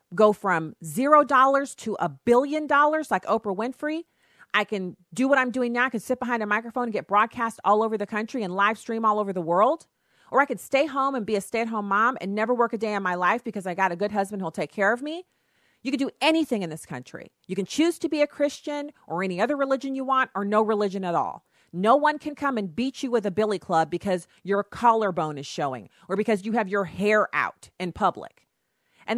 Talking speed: 240 wpm